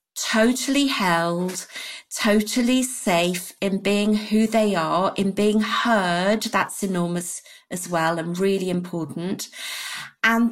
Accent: British